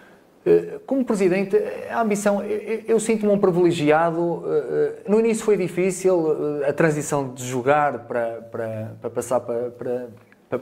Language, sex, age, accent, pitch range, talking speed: Portuguese, male, 30-49, Portuguese, 120-155 Hz, 135 wpm